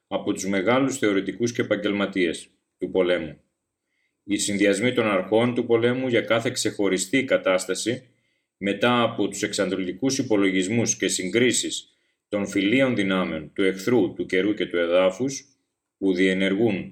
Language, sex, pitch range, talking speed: Greek, male, 95-120 Hz, 130 wpm